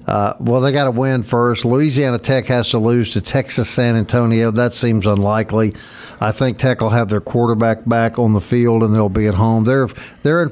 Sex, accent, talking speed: male, American, 215 wpm